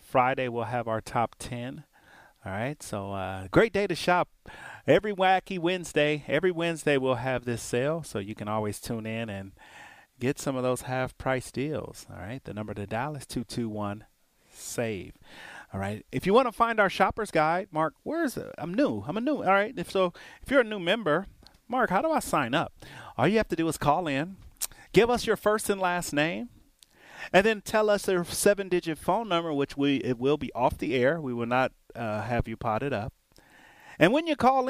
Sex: male